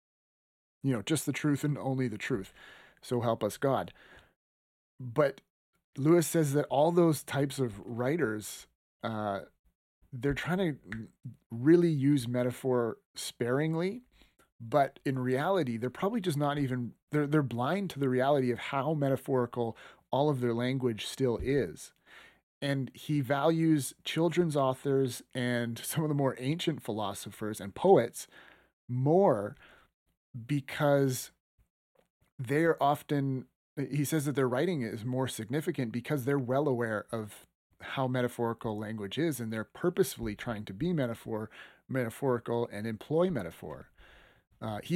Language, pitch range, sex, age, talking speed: English, 115-145 Hz, male, 30-49, 135 wpm